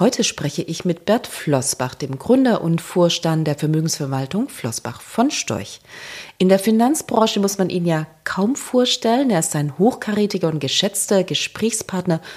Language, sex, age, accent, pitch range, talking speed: German, female, 40-59, German, 165-235 Hz, 150 wpm